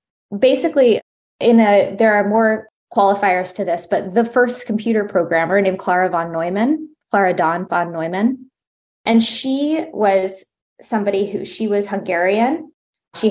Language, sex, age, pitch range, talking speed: English, female, 20-39, 175-220 Hz, 140 wpm